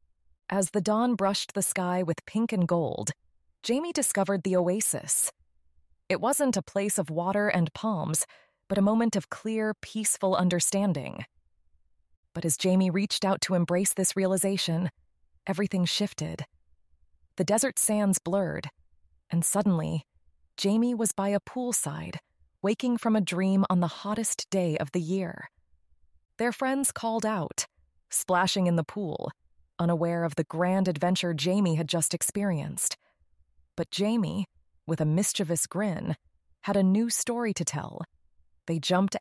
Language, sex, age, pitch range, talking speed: English, female, 20-39, 150-200 Hz, 140 wpm